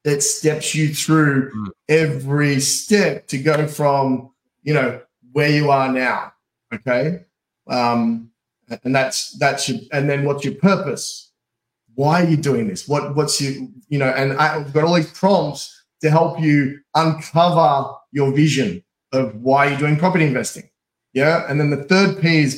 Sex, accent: male, Australian